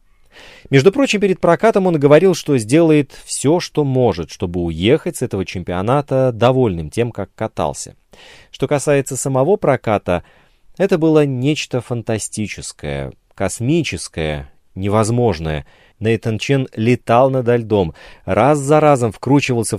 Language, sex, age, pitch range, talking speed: Russian, male, 30-49, 95-135 Hz, 120 wpm